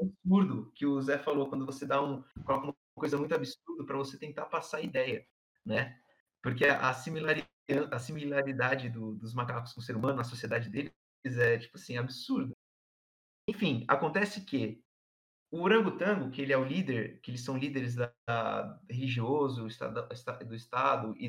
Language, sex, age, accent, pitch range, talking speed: Portuguese, male, 30-49, Brazilian, 120-150 Hz, 165 wpm